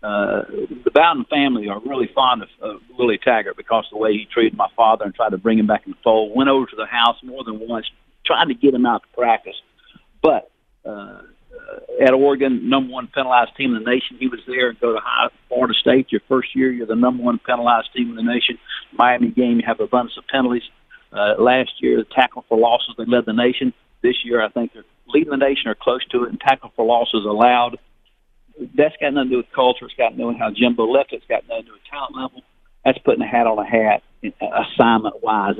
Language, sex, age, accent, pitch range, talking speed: English, male, 50-69, American, 115-140 Hz, 245 wpm